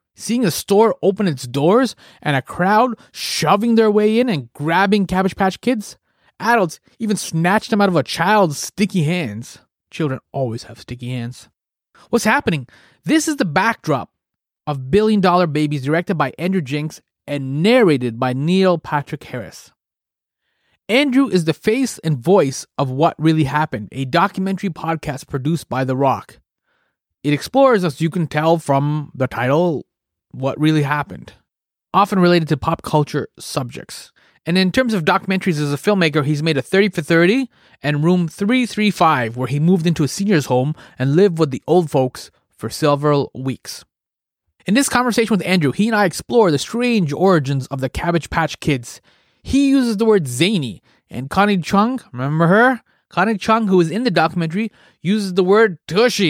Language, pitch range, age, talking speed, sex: English, 145-205 Hz, 30-49, 170 wpm, male